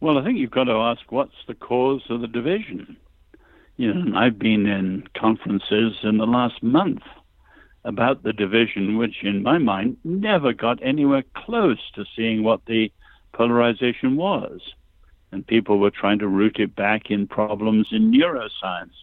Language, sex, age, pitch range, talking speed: English, male, 60-79, 105-125 Hz, 165 wpm